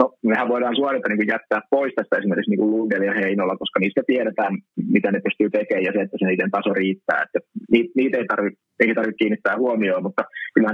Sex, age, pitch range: male, 20-39, 105-120 Hz